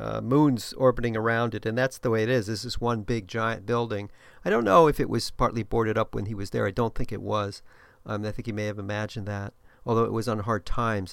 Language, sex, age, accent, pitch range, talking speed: English, male, 40-59, American, 110-125 Hz, 265 wpm